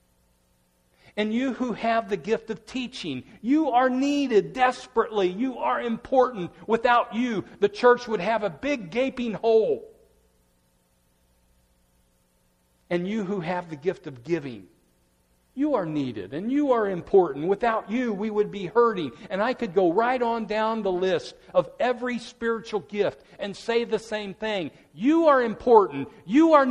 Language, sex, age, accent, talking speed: English, male, 50-69, American, 155 wpm